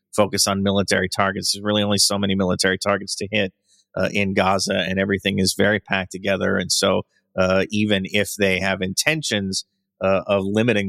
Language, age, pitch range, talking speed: English, 30-49, 95-110 Hz, 180 wpm